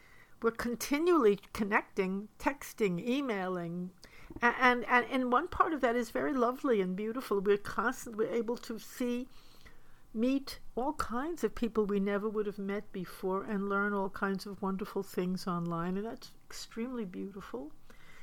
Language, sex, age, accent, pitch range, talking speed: English, female, 60-79, American, 195-235 Hz, 150 wpm